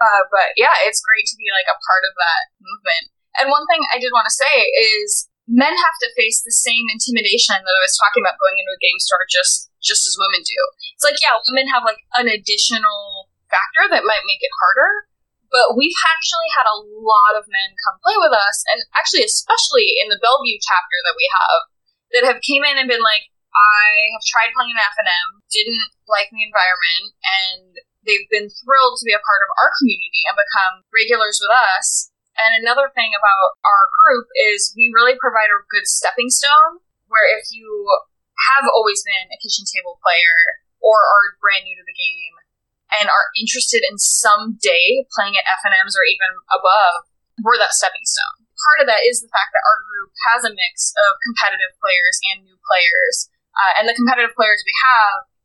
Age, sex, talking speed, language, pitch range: 10-29, female, 200 wpm, English, 205-300 Hz